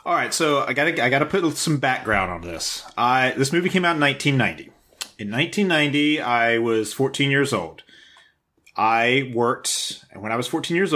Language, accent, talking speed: English, American, 195 wpm